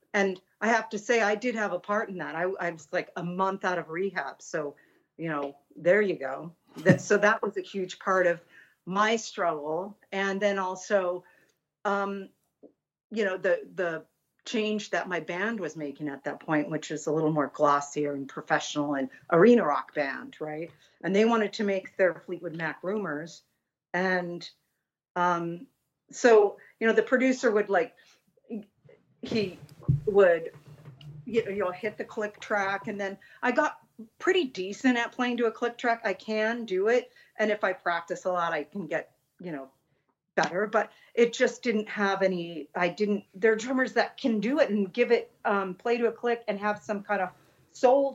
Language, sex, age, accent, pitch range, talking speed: English, female, 50-69, American, 170-215 Hz, 185 wpm